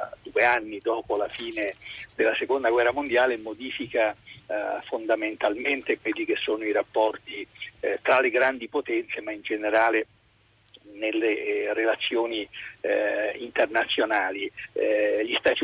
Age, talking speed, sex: 50-69, 125 wpm, male